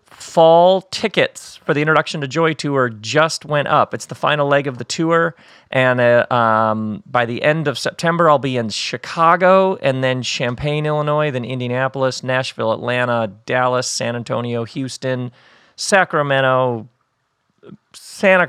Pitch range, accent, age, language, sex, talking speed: 115-145 Hz, American, 40-59, English, male, 145 wpm